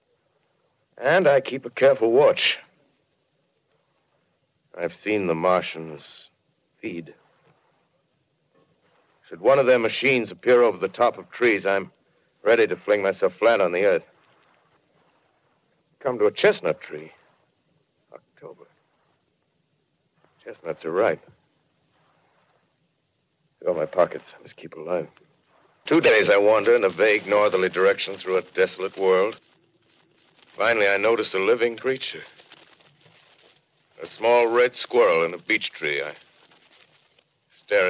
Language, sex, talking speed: English, male, 120 wpm